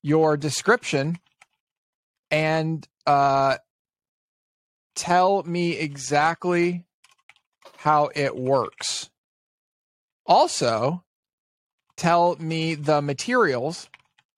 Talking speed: 65 wpm